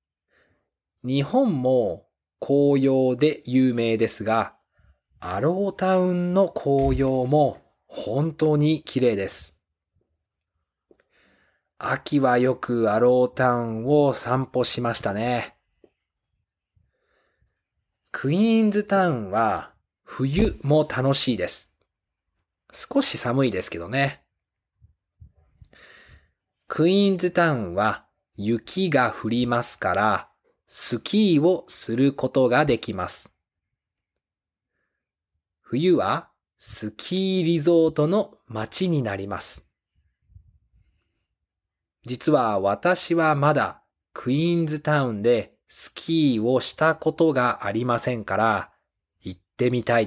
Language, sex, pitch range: Japanese, male, 100-155 Hz